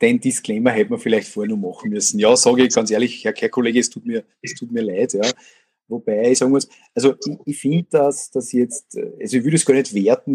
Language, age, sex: German, 30-49, male